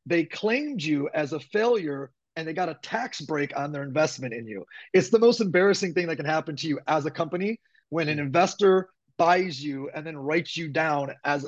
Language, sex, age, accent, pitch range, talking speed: English, male, 30-49, American, 150-195 Hz, 215 wpm